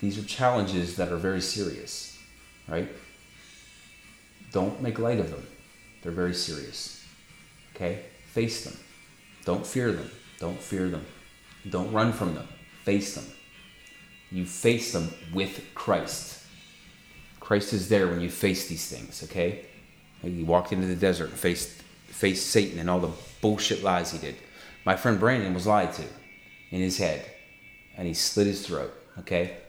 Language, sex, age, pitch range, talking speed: English, male, 30-49, 90-115 Hz, 155 wpm